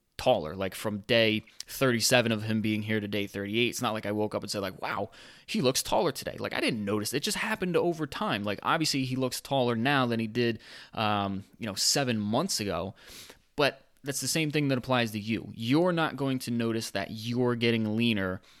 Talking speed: 220 wpm